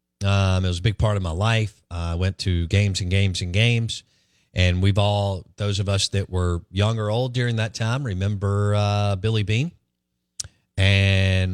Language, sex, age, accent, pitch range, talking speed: English, male, 40-59, American, 90-110 Hz, 185 wpm